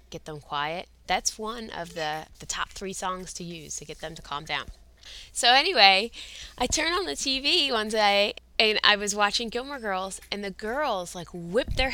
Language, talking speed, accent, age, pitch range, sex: English, 200 wpm, American, 20-39, 155-220 Hz, female